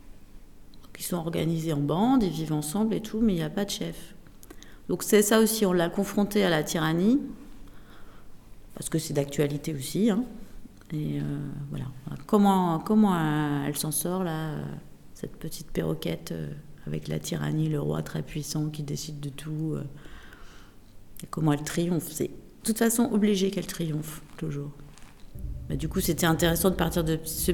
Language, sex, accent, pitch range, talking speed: French, female, French, 145-190 Hz, 170 wpm